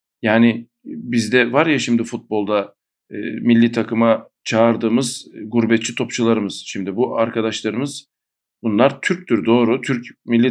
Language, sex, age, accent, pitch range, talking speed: Turkish, male, 40-59, native, 120-155 Hz, 115 wpm